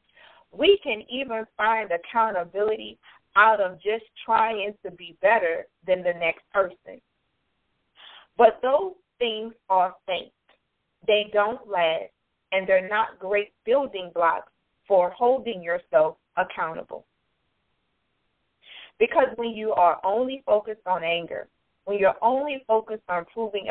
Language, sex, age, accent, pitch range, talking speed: English, female, 30-49, American, 180-235 Hz, 120 wpm